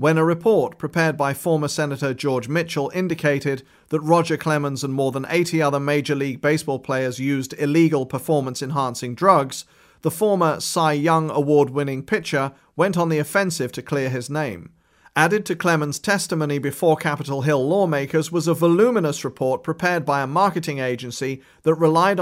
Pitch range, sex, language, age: 140-170 Hz, male, English, 40-59